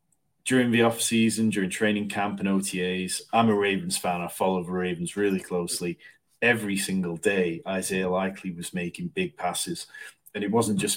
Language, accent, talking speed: English, British, 170 wpm